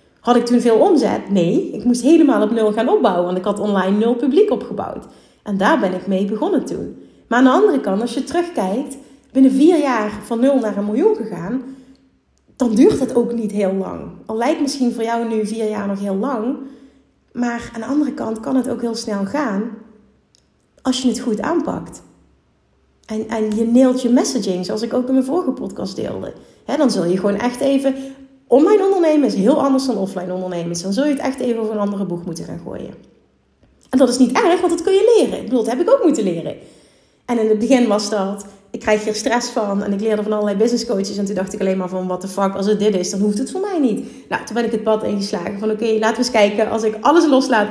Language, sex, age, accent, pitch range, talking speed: Dutch, female, 30-49, Dutch, 205-265 Hz, 245 wpm